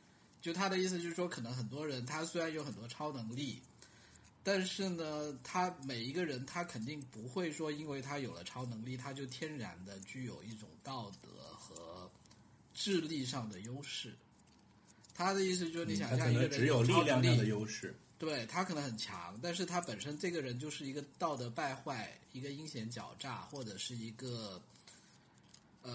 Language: Chinese